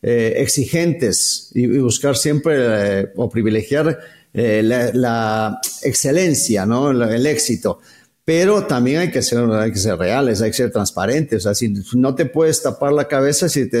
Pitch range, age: 115-145 Hz, 50-69